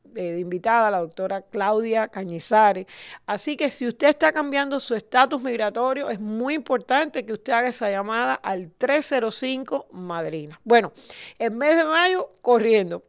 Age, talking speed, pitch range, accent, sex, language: 40-59, 140 wpm, 215-285 Hz, American, female, Spanish